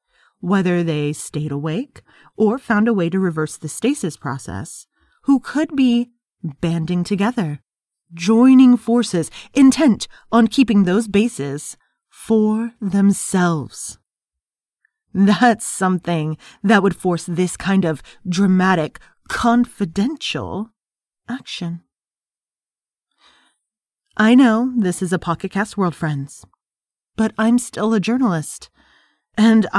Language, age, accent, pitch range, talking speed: English, 30-49, American, 170-225 Hz, 105 wpm